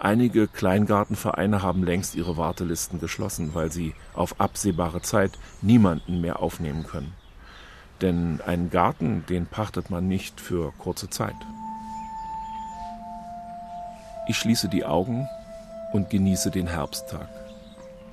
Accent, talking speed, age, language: German, 115 wpm, 50-69, German